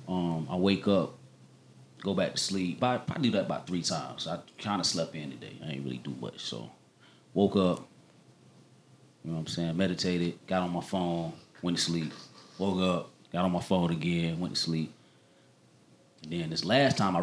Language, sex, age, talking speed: English, male, 30-49, 200 wpm